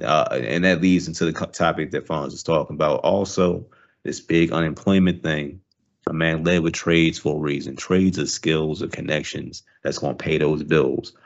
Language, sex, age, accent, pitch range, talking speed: English, male, 30-49, American, 80-90 Hz, 190 wpm